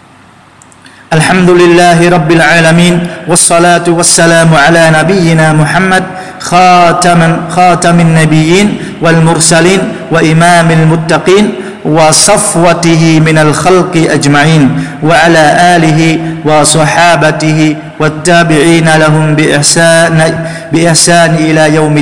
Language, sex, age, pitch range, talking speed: Vietnamese, male, 40-59, 145-170 Hz, 75 wpm